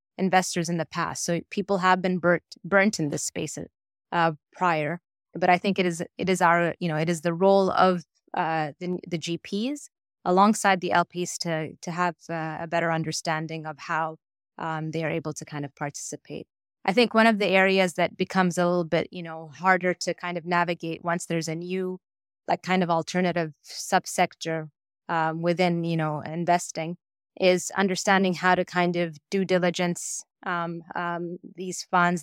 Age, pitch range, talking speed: 20-39, 165-185 Hz, 180 wpm